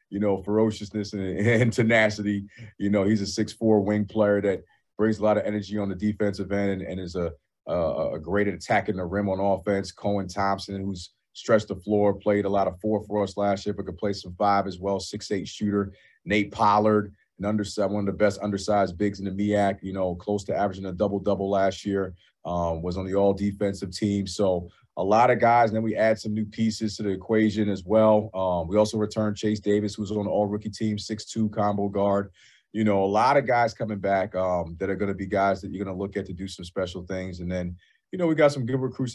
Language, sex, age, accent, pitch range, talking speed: English, male, 30-49, American, 95-105 Hz, 240 wpm